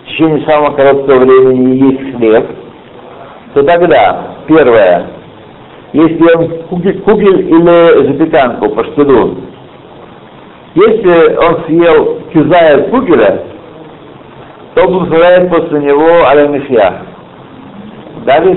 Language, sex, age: Russian, male, 60-79